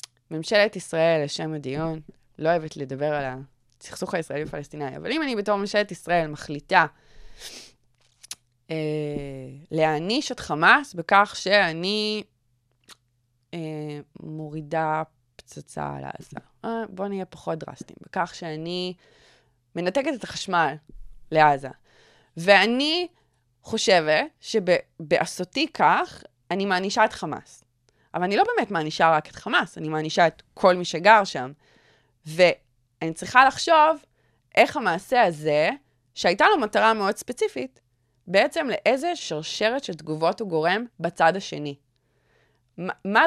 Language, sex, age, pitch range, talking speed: Hebrew, female, 20-39, 140-200 Hz, 115 wpm